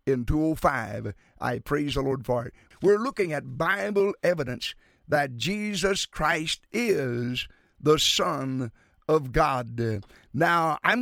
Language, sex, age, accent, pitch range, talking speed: English, male, 50-69, American, 140-195 Hz, 125 wpm